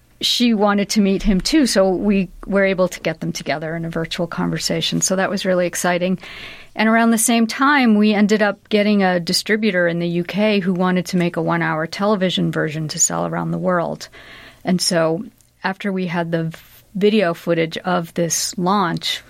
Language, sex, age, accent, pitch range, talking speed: English, female, 40-59, American, 170-195 Hz, 190 wpm